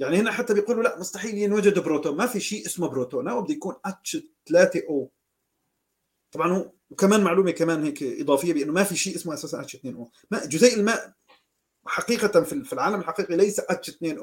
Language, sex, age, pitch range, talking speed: Arabic, male, 40-59, 150-215 Hz, 190 wpm